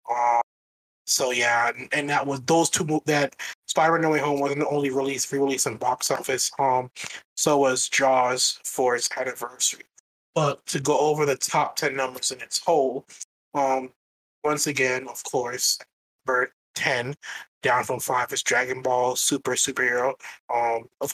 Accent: American